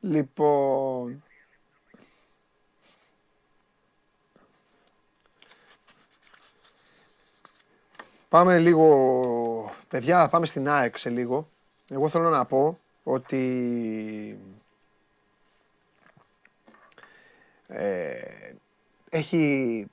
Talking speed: 45 wpm